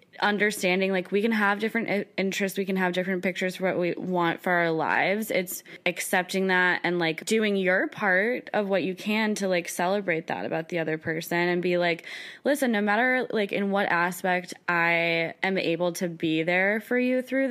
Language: English